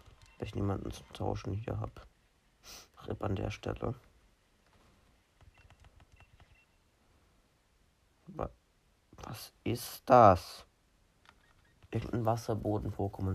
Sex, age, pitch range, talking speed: male, 50-69, 95-110 Hz, 70 wpm